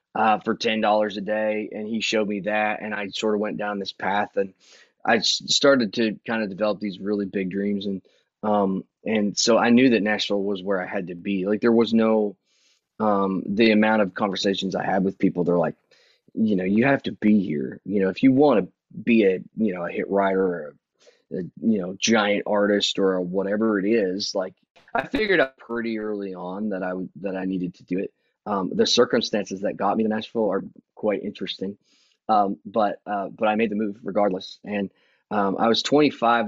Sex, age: male, 20-39